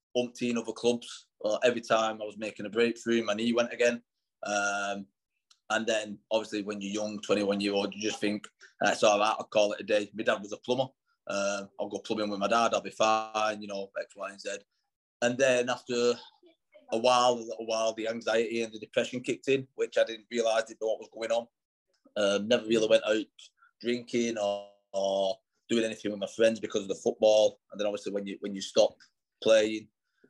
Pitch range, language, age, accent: 100-120 Hz, English, 20-39, British